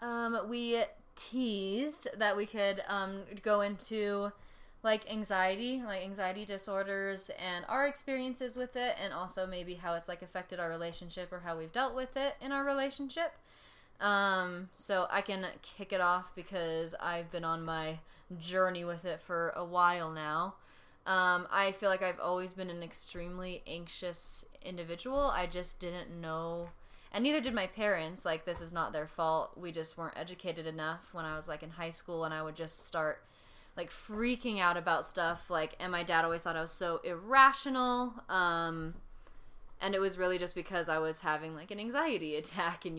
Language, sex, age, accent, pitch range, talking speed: English, female, 20-39, American, 165-205 Hz, 180 wpm